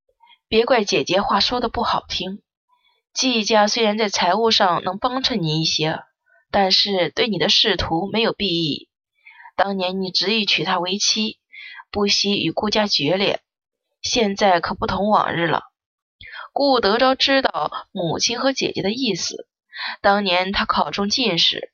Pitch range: 190-255 Hz